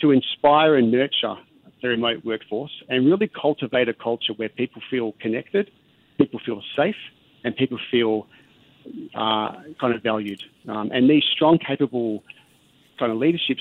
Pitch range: 115-145 Hz